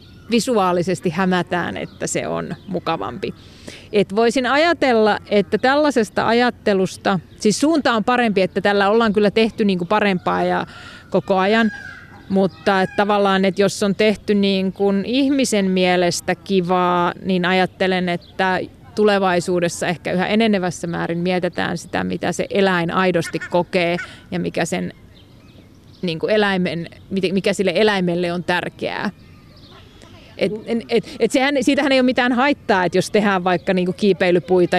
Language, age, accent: Finnish, 30-49, native